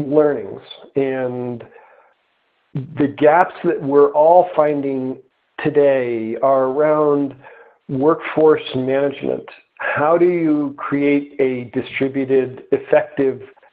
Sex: male